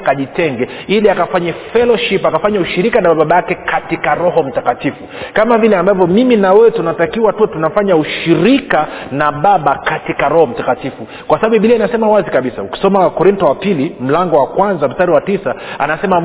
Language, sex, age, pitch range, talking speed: Swahili, male, 40-59, 165-220 Hz, 165 wpm